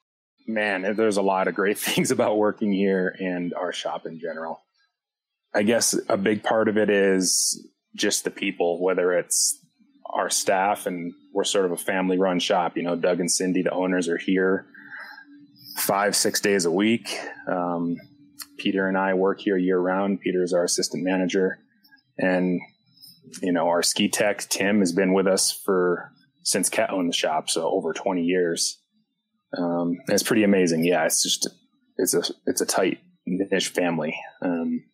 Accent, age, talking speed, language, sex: American, 20-39, 175 wpm, English, male